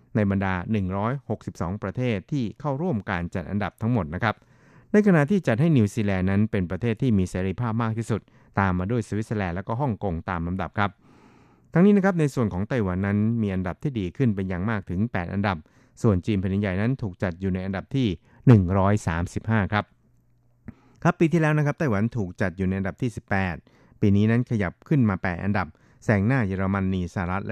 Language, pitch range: Thai, 95-120 Hz